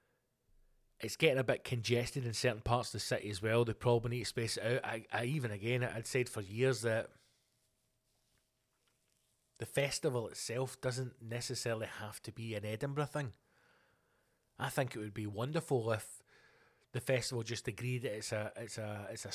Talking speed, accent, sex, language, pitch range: 180 wpm, British, male, English, 110-130 Hz